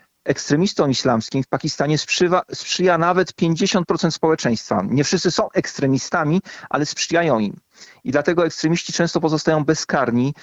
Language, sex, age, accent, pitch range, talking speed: Polish, male, 40-59, native, 130-155 Hz, 120 wpm